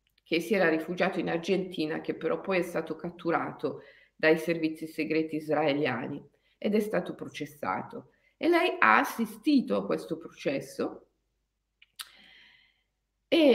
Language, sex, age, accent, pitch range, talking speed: Italian, female, 50-69, native, 165-250 Hz, 125 wpm